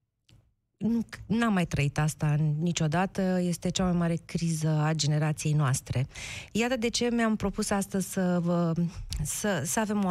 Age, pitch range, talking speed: 30-49, 150-190 Hz, 150 wpm